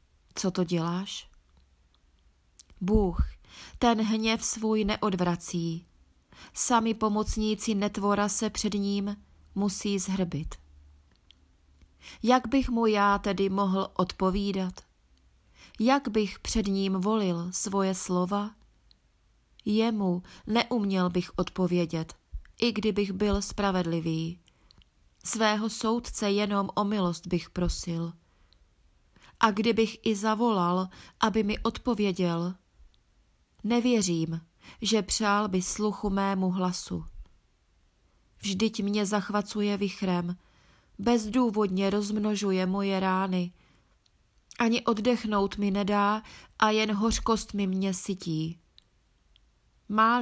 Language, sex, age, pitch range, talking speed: Czech, female, 30-49, 175-215 Hz, 95 wpm